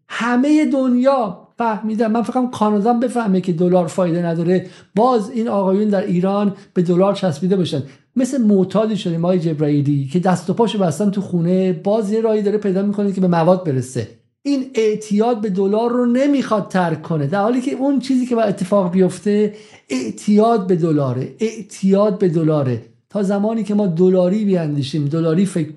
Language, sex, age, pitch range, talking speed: Persian, male, 50-69, 155-200 Hz, 170 wpm